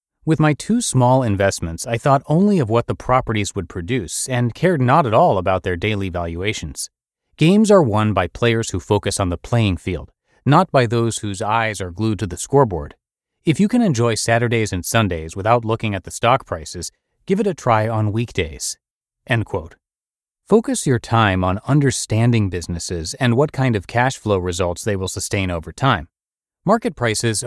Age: 30-49